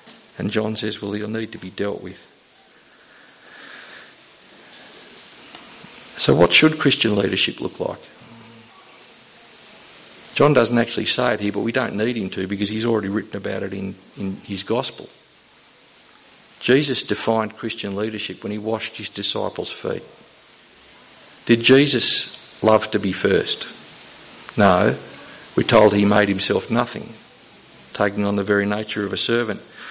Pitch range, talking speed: 105-120 Hz, 140 wpm